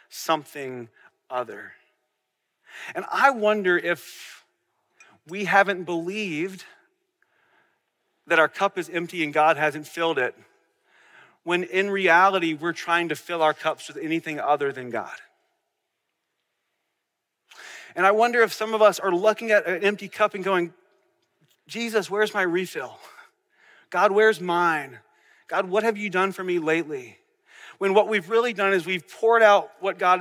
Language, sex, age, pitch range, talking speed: English, male, 40-59, 160-210 Hz, 145 wpm